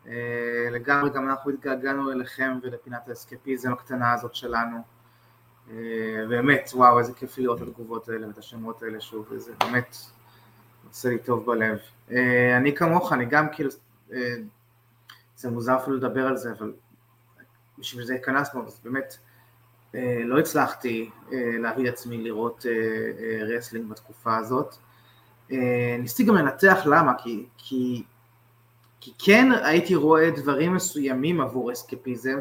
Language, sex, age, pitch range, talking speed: Hebrew, male, 20-39, 120-140 Hz, 140 wpm